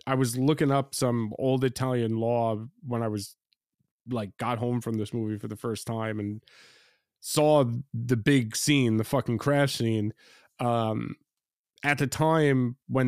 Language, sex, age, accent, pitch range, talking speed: English, male, 30-49, American, 120-145 Hz, 160 wpm